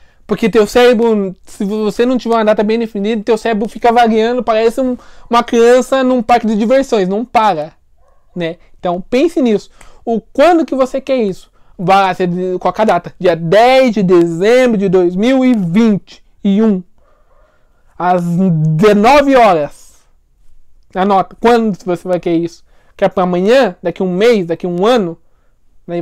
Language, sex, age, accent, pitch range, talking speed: Portuguese, male, 20-39, Brazilian, 190-245 Hz, 145 wpm